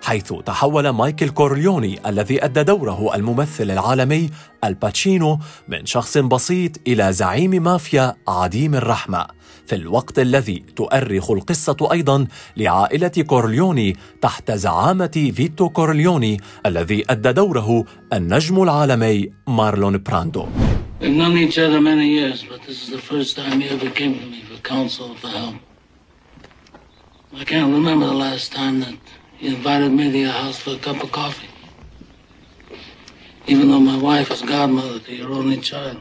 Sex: male